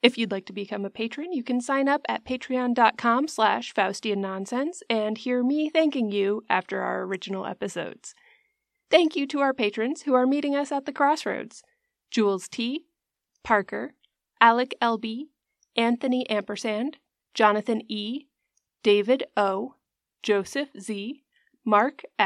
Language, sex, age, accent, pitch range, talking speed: English, female, 30-49, American, 215-285 Hz, 130 wpm